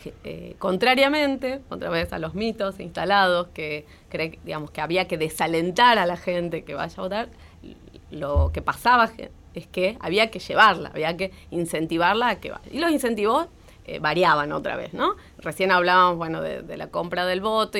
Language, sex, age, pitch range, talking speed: Spanish, female, 20-39, 165-230 Hz, 175 wpm